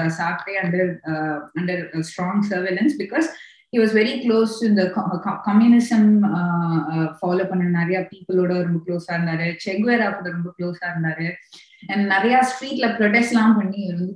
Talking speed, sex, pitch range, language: 155 wpm, female, 175-235 Hz, Tamil